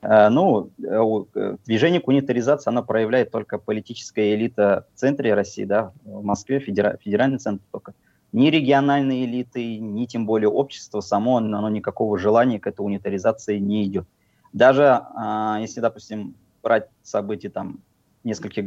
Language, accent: Russian, native